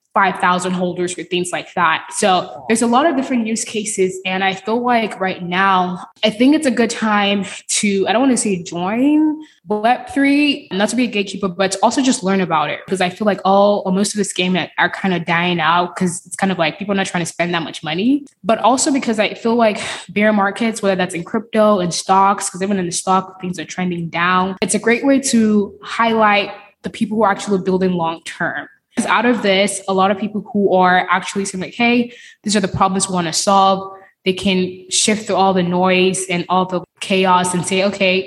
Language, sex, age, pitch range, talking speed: English, female, 20-39, 185-215 Hz, 230 wpm